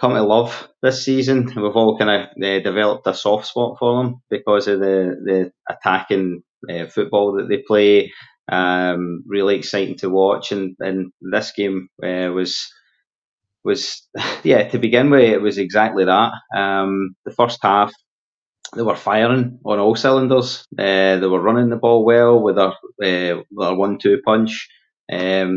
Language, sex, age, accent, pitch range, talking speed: English, male, 20-39, British, 95-115 Hz, 160 wpm